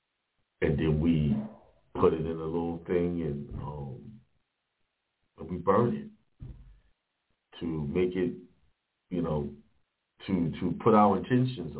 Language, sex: English, male